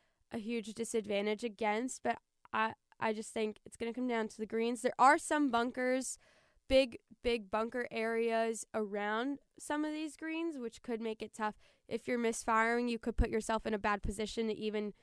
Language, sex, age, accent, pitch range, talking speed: English, female, 10-29, American, 215-250 Hz, 190 wpm